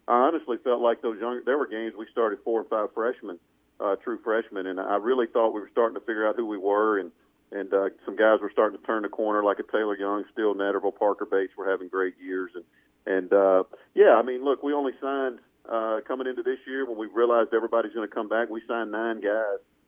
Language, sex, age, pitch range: English, male, 40-59, 100-125 Hz